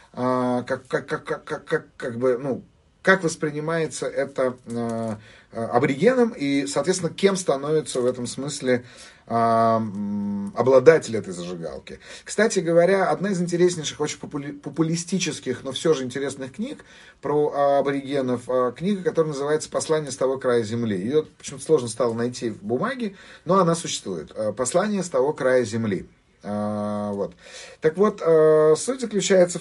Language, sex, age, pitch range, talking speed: Russian, male, 30-49, 120-180 Hz, 115 wpm